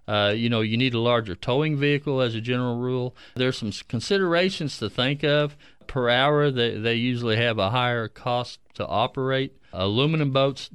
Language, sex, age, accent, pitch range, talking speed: English, male, 40-59, American, 110-135 Hz, 180 wpm